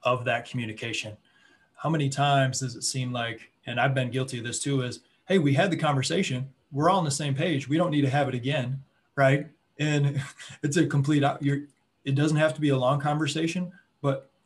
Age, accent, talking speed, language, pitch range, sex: 20-39, American, 210 wpm, English, 120-140 Hz, male